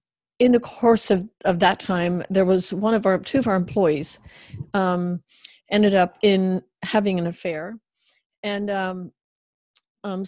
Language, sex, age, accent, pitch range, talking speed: English, female, 60-79, American, 185-225 Hz, 150 wpm